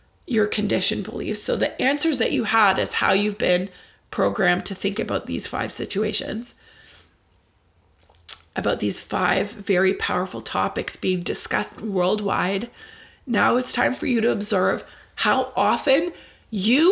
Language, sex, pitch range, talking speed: English, female, 175-240 Hz, 140 wpm